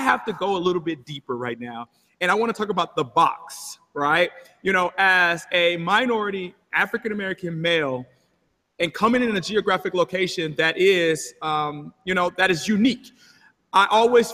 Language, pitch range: English, 165-205 Hz